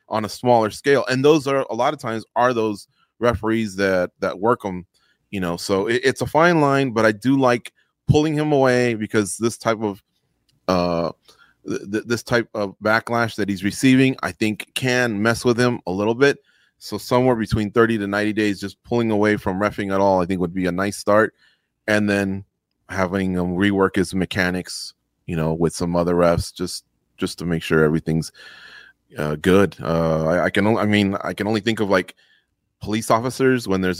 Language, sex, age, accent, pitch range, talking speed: English, male, 30-49, American, 85-110 Hz, 205 wpm